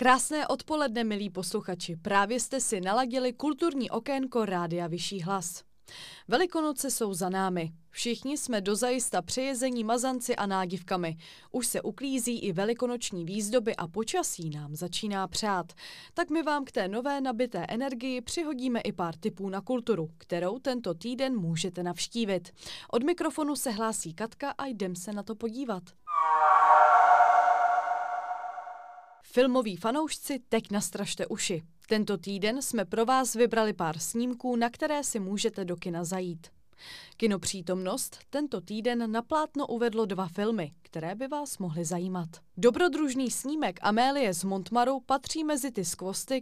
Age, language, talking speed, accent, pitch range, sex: 20-39, Czech, 140 wpm, native, 190-265 Hz, female